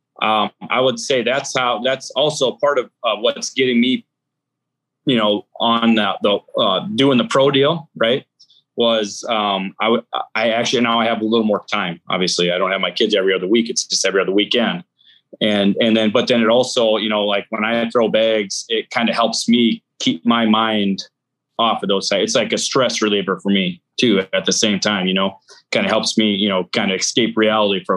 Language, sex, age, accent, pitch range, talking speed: English, male, 20-39, American, 100-125 Hz, 220 wpm